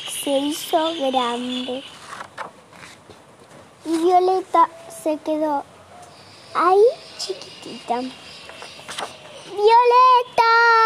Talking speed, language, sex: 55 wpm, Spanish, male